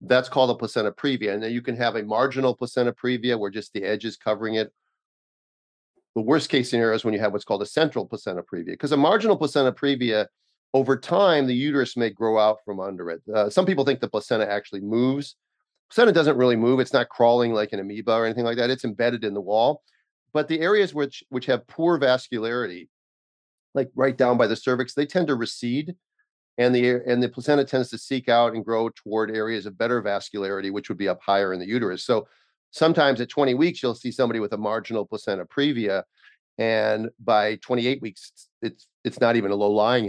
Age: 40-59